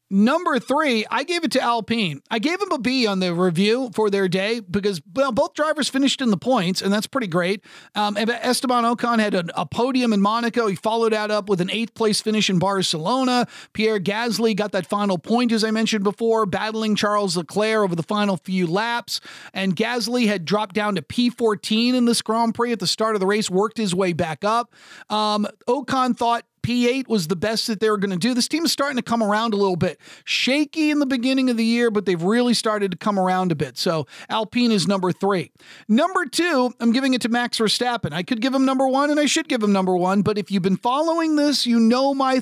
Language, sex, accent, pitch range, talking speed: English, male, American, 205-255 Hz, 230 wpm